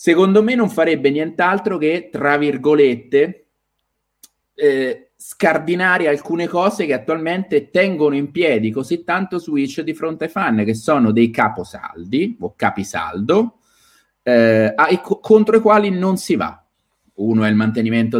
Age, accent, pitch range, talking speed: 30-49, native, 120-175 Hz, 140 wpm